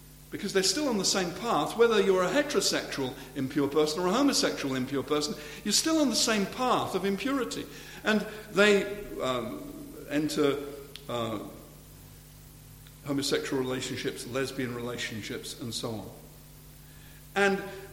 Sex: male